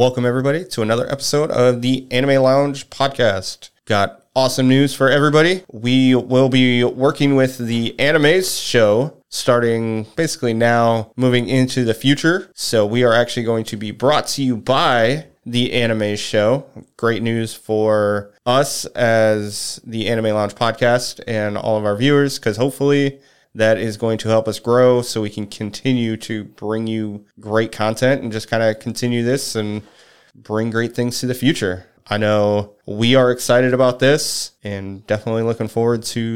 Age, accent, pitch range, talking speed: 20-39, American, 110-130 Hz, 165 wpm